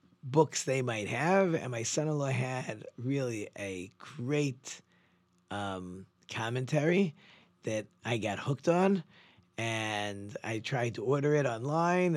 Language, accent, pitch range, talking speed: English, American, 110-160 Hz, 125 wpm